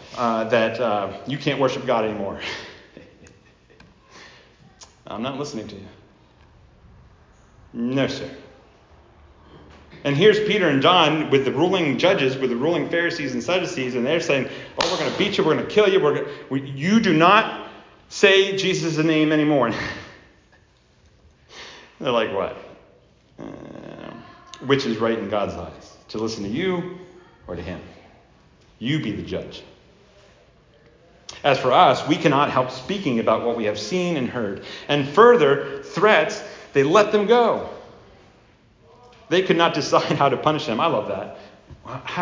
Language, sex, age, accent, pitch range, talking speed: English, male, 40-59, American, 120-175 Hz, 155 wpm